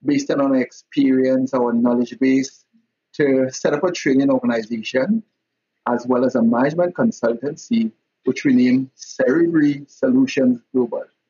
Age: 60-79